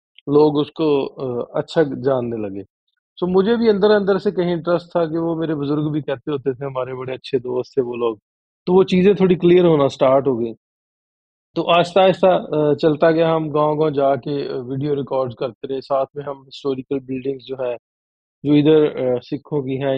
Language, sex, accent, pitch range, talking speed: Hindi, male, native, 130-160 Hz, 190 wpm